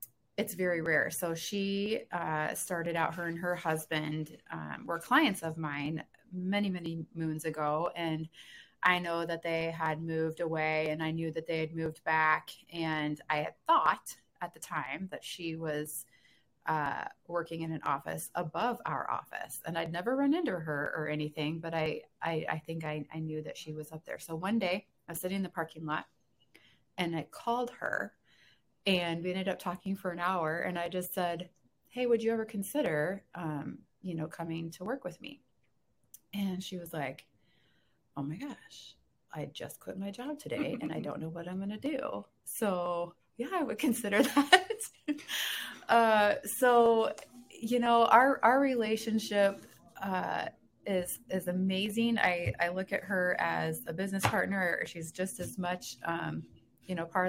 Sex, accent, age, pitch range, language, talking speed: female, American, 30-49, 160-200 Hz, English, 180 wpm